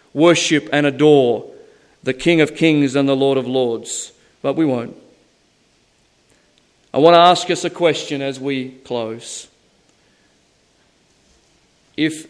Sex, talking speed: male, 125 wpm